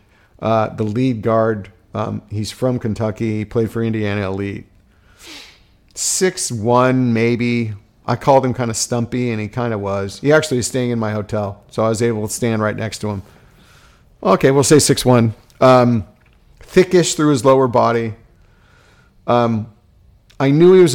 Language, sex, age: English, male, 50-69